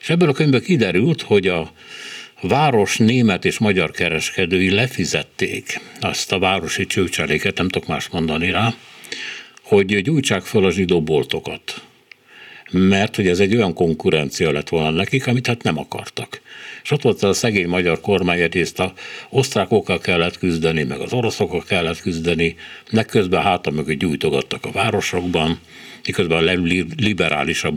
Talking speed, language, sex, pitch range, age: 145 wpm, Hungarian, male, 85-115 Hz, 60-79